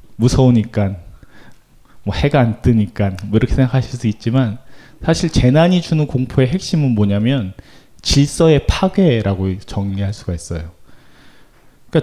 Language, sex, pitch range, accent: Korean, male, 110-145 Hz, native